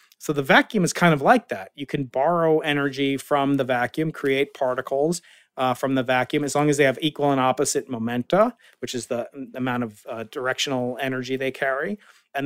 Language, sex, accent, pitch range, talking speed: English, male, American, 130-155 Hz, 200 wpm